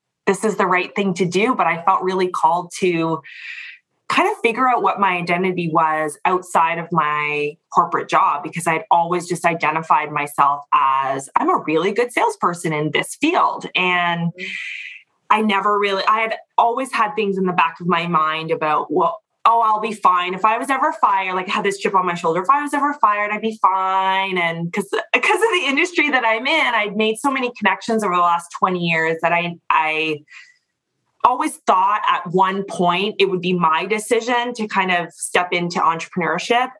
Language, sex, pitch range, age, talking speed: English, female, 170-230 Hz, 20-39, 195 wpm